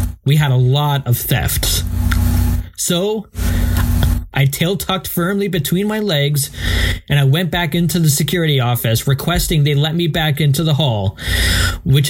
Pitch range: 90-155 Hz